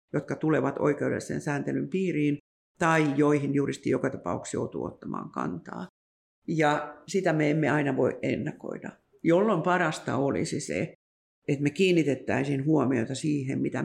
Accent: native